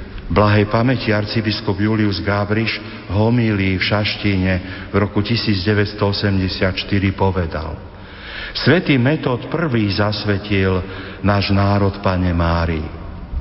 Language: Slovak